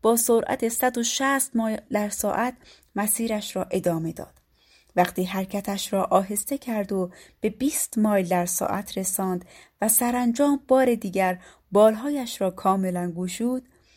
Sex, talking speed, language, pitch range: female, 130 wpm, Persian, 185-230 Hz